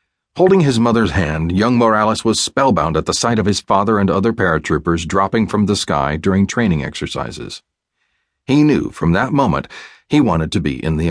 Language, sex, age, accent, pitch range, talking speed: English, male, 40-59, American, 85-120 Hz, 190 wpm